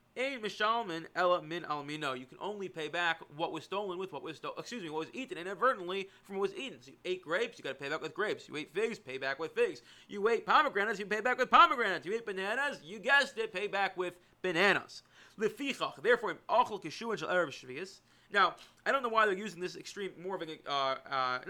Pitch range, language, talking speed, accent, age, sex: 155-225 Hz, English, 205 wpm, American, 30-49, male